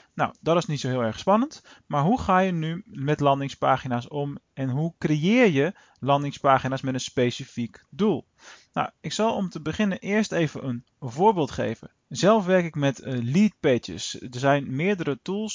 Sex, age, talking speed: male, 20-39, 175 wpm